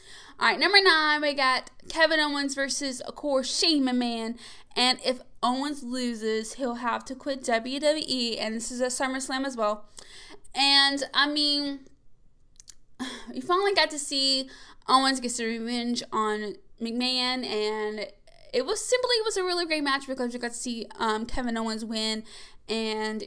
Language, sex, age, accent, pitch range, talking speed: English, female, 10-29, American, 230-290 Hz, 160 wpm